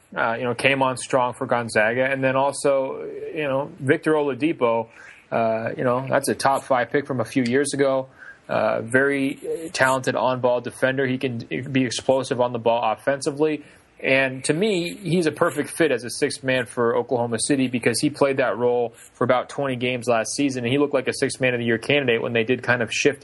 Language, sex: English, male